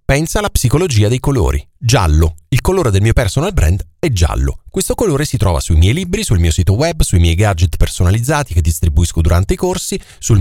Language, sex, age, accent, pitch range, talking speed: Italian, male, 40-59, native, 90-130 Hz, 200 wpm